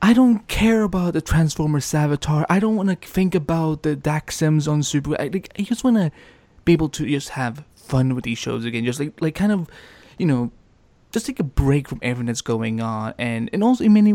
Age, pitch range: 20-39, 125-175 Hz